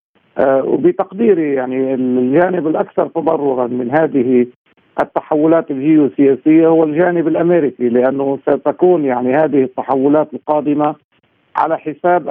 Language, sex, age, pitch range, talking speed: Arabic, male, 50-69, 135-160 Hz, 95 wpm